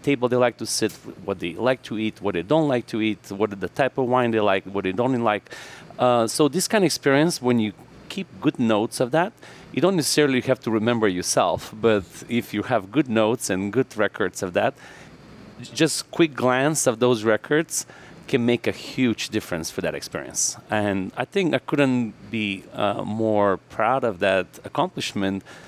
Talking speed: 200 wpm